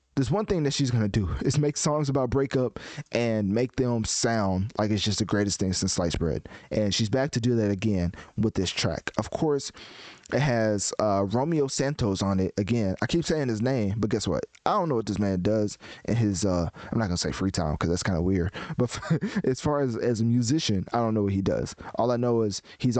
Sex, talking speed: male, 250 wpm